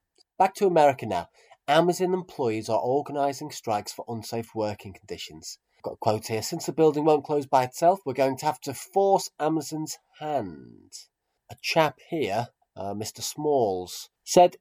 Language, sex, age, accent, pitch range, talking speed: English, male, 30-49, British, 110-155 Hz, 165 wpm